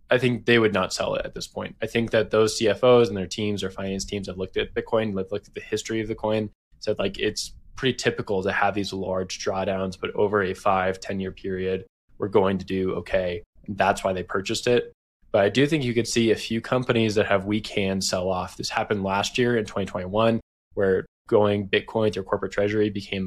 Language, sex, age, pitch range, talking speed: English, male, 20-39, 95-115 Hz, 230 wpm